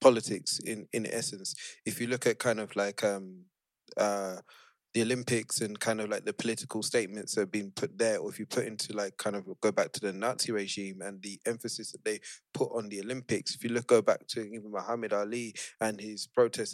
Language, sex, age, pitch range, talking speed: English, male, 20-39, 105-120 Hz, 220 wpm